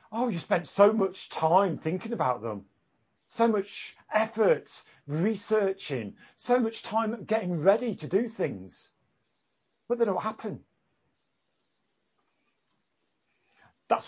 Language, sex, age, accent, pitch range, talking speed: English, male, 40-59, British, 130-195 Hz, 110 wpm